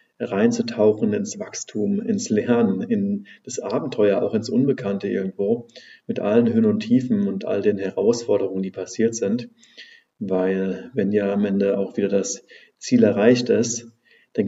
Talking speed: 150 wpm